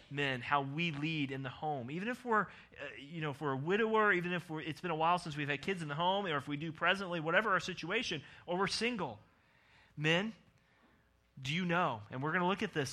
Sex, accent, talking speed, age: male, American, 225 wpm, 30-49